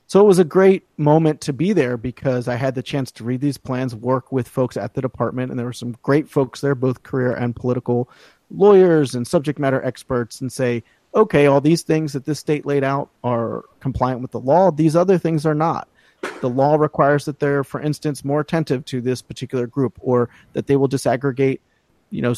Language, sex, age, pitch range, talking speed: English, male, 30-49, 120-145 Hz, 215 wpm